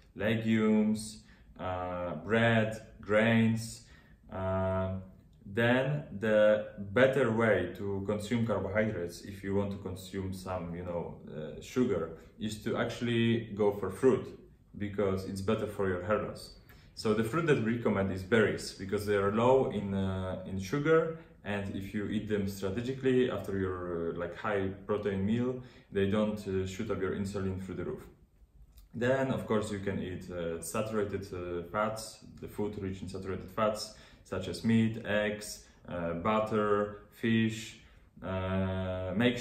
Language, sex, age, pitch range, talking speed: English, male, 30-49, 95-110 Hz, 150 wpm